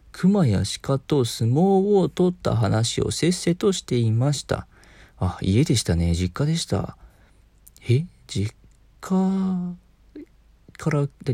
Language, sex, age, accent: Japanese, male, 40-59, native